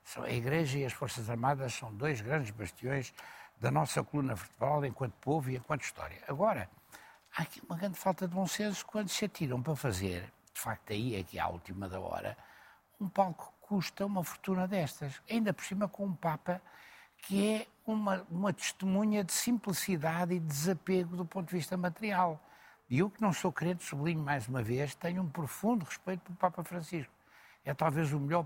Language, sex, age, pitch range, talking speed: Portuguese, male, 60-79, 130-190 Hz, 190 wpm